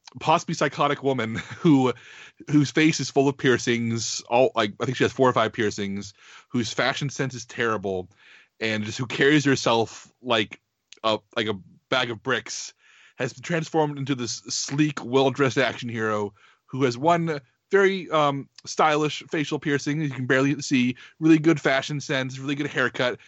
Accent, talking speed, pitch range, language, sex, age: American, 170 wpm, 110-140 Hz, English, male, 30-49